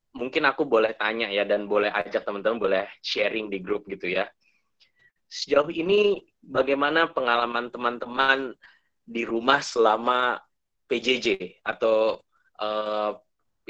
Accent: native